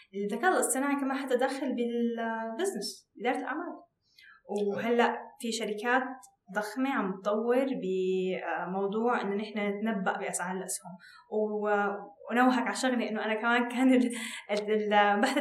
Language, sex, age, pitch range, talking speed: Arabic, female, 10-29, 210-260 Hz, 105 wpm